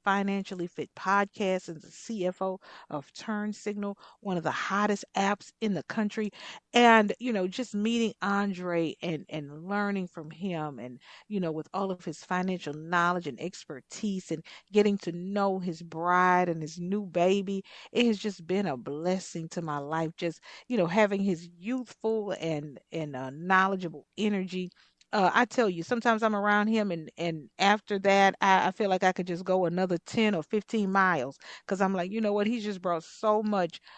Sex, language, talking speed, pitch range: female, English, 185 wpm, 175-215 Hz